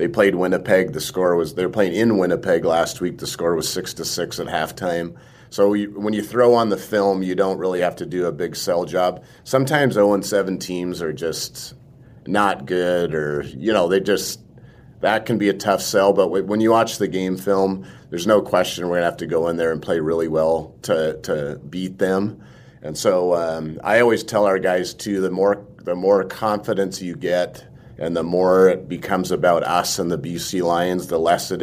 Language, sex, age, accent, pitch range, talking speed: English, male, 30-49, American, 80-95 Hz, 210 wpm